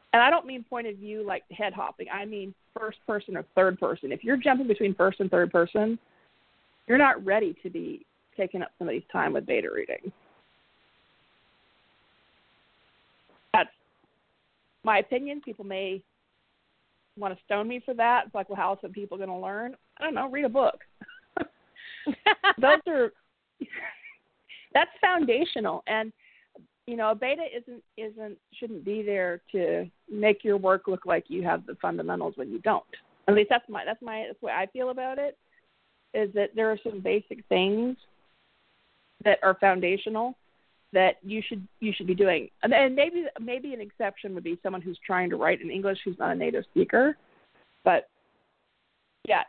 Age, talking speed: 40-59, 170 wpm